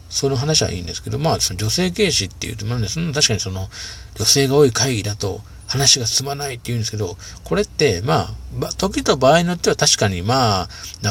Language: Japanese